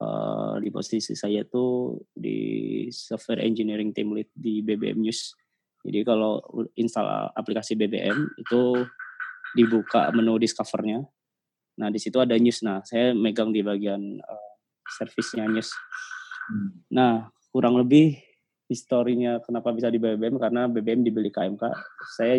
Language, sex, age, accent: Indonesian, male, 20-39, native